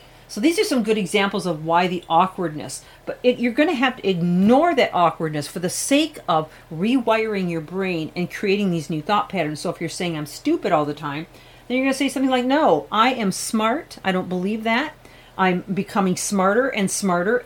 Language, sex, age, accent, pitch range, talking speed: English, female, 40-59, American, 170-230 Hz, 210 wpm